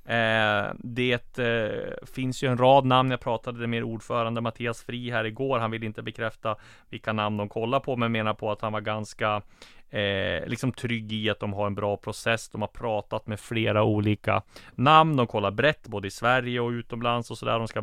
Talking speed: 210 wpm